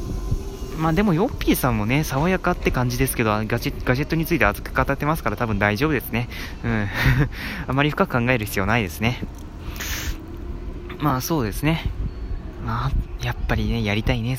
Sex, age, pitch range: male, 20-39, 100-140 Hz